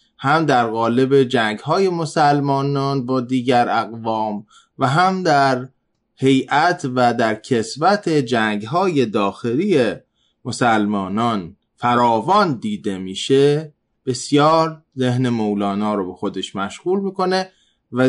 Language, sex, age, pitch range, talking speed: Persian, male, 20-39, 115-165 Hz, 100 wpm